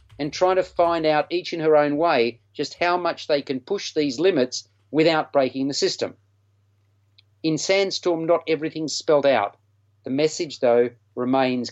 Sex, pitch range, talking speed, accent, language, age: male, 115-165 Hz, 165 wpm, Australian, English, 40-59